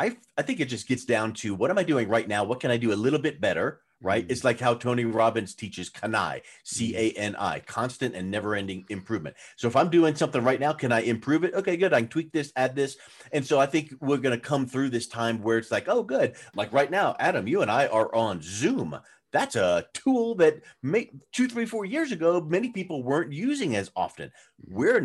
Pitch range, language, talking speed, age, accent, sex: 110-145 Hz, English, 230 wpm, 40-59, American, male